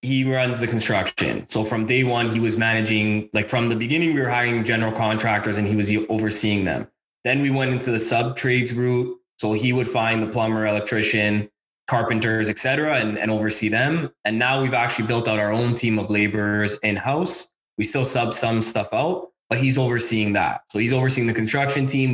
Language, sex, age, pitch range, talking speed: English, male, 20-39, 105-125 Hz, 205 wpm